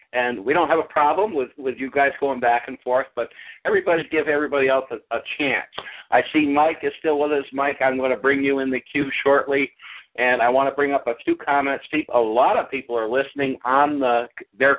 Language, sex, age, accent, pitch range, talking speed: English, male, 60-79, American, 125-145 Hz, 235 wpm